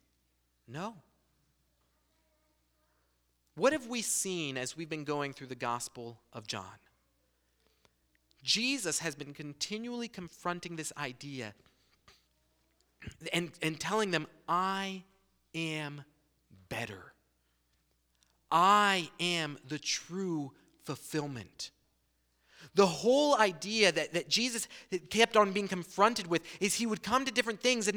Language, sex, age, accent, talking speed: English, male, 30-49, American, 110 wpm